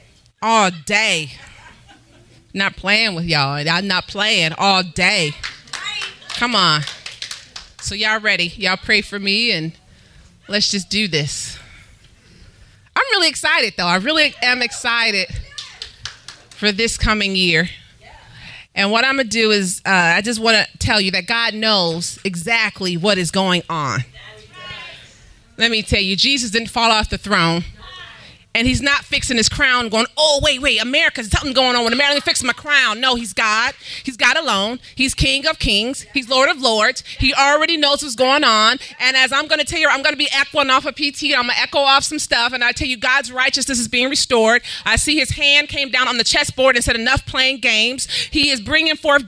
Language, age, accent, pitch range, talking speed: English, 30-49, American, 195-275 Hz, 195 wpm